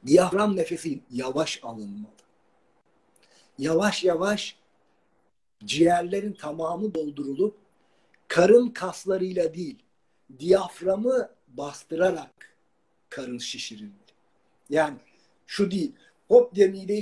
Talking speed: 75 wpm